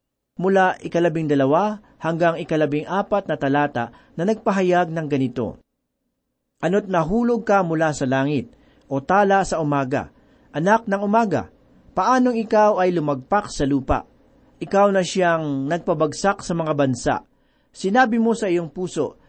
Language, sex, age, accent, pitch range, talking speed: Filipino, male, 40-59, native, 160-210 Hz, 135 wpm